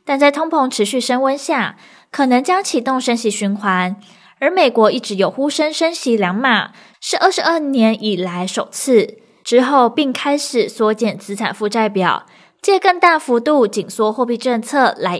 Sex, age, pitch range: female, 20-39, 205-265 Hz